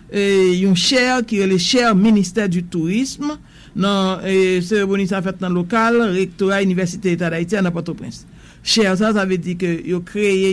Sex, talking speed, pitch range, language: male, 190 wpm, 180-215 Hz, English